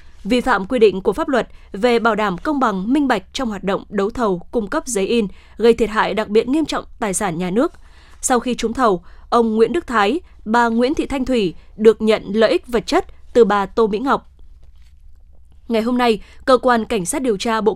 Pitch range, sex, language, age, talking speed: 210-255 Hz, female, Vietnamese, 20-39, 230 wpm